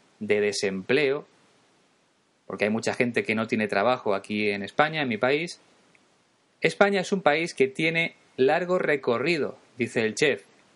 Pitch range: 120-160 Hz